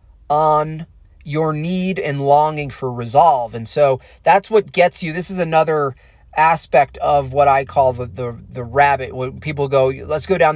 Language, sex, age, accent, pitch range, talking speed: English, male, 30-49, American, 125-160 Hz, 175 wpm